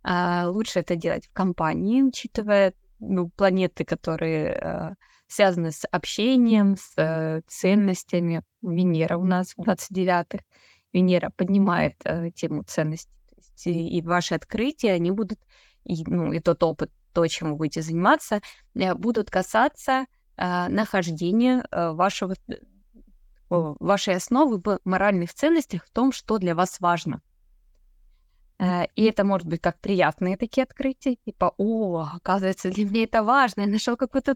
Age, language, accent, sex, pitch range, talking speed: 20-39, Russian, native, female, 175-225 Hz, 140 wpm